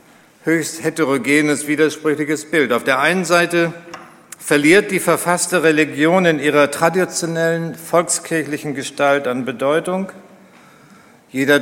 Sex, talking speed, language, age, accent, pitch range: male, 105 wpm, German, 50-69, German, 150-175 Hz